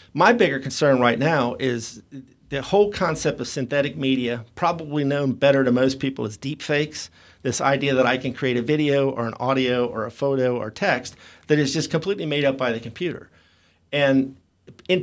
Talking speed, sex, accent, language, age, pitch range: 190 wpm, male, American, English, 50-69, 125-160 Hz